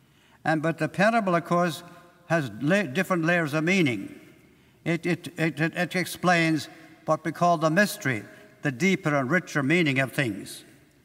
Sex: male